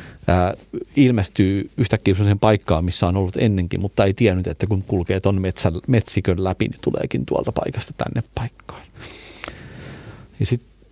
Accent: native